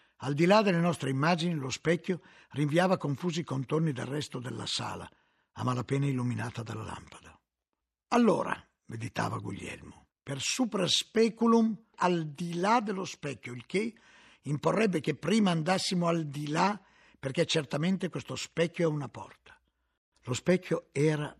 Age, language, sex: 60-79, Italian, male